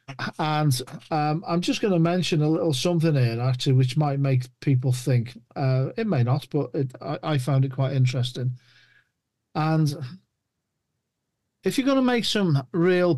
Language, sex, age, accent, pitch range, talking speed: English, male, 50-69, British, 125-155 Hz, 165 wpm